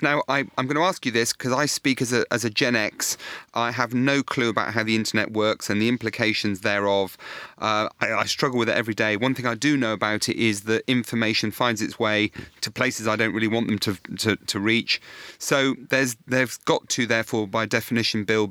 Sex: male